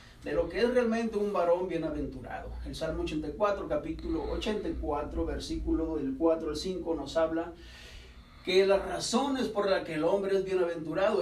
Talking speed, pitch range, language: 160 wpm, 155-195 Hz, Spanish